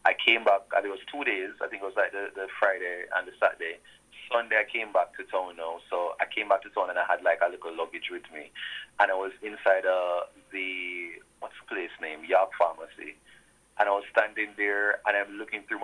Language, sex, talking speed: English, male, 230 wpm